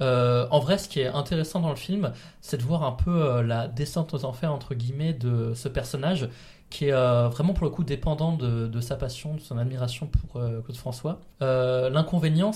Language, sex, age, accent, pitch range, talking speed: French, male, 20-39, French, 130-165 Hz, 220 wpm